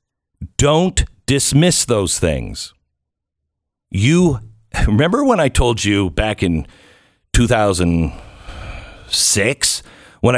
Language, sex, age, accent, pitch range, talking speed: English, male, 50-69, American, 95-140 Hz, 80 wpm